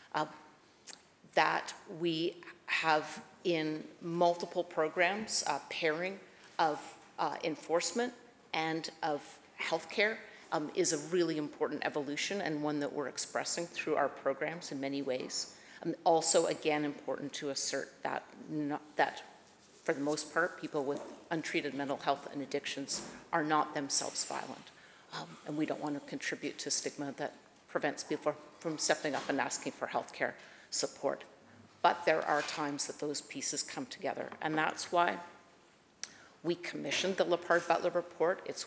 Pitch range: 150-175 Hz